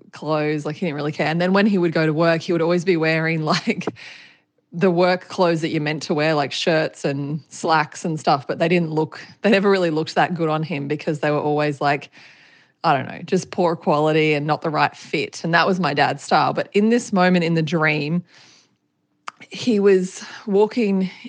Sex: female